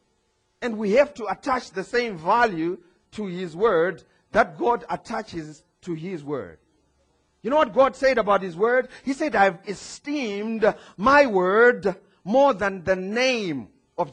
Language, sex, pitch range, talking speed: English, male, 195-275 Hz, 155 wpm